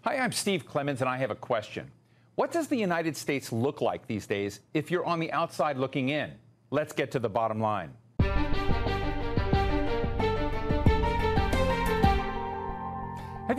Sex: male